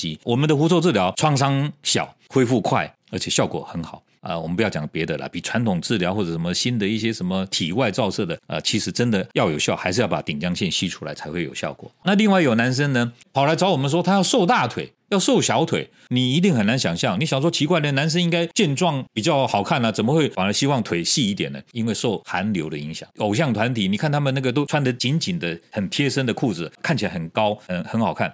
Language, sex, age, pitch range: Chinese, male, 40-59, 105-155 Hz